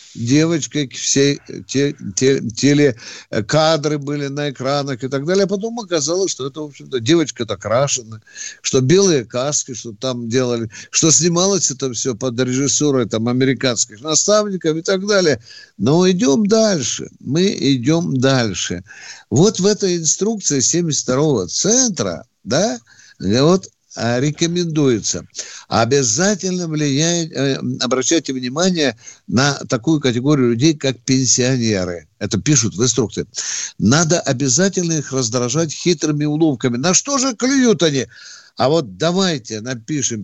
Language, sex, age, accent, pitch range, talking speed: Russian, male, 50-69, native, 125-175 Hz, 125 wpm